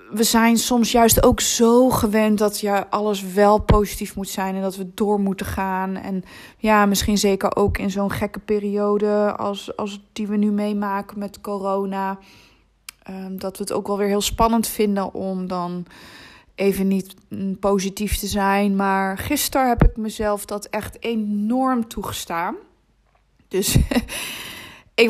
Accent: Dutch